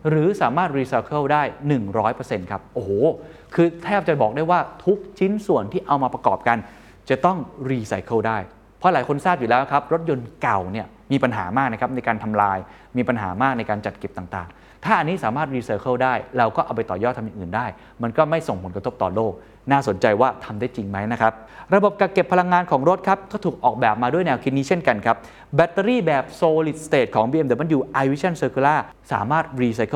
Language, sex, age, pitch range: Thai, male, 20-39, 115-175 Hz